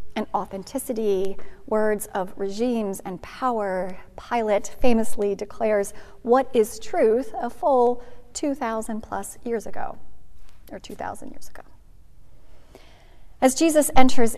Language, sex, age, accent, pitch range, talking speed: English, female, 30-49, American, 190-230 Hz, 110 wpm